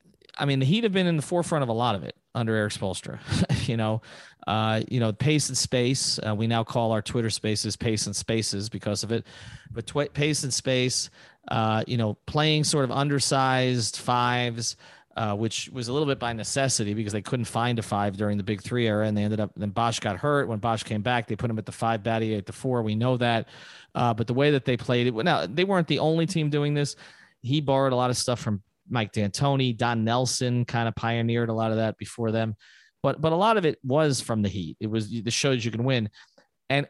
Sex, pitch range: male, 110-140 Hz